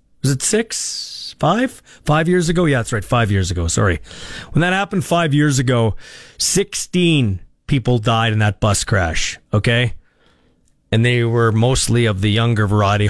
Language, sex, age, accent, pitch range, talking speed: English, male, 40-59, American, 105-145 Hz, 165 wpm